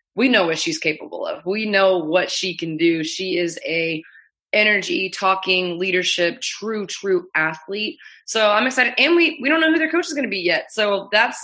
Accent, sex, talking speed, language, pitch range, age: American, female, 205 wpm, English, 170-210 Hz, 20-39